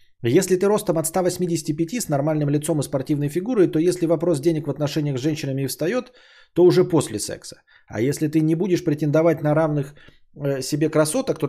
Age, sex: 20-39, male